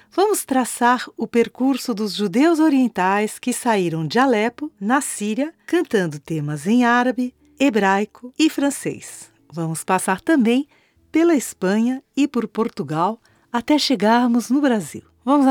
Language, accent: Portuguese, Brazilian